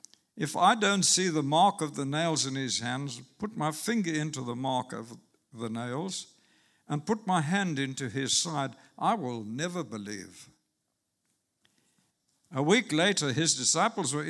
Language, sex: English, male